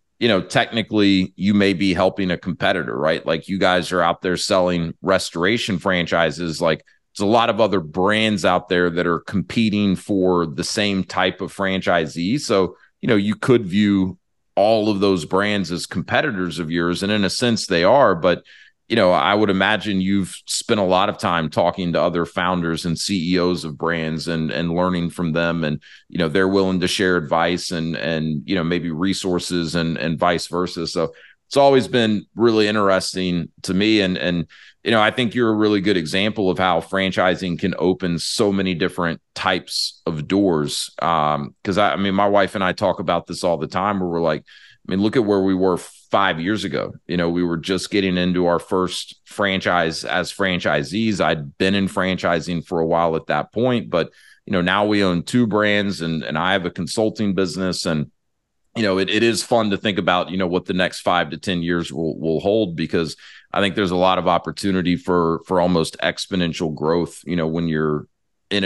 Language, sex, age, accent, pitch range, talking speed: English, male, 30-49, American, 85-100 Hz, 205 wpm